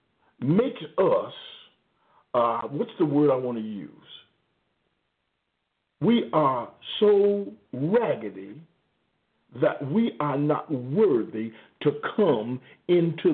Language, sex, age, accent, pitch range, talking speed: English, male, 50-69, American, 115-175 Hz, 100 wpm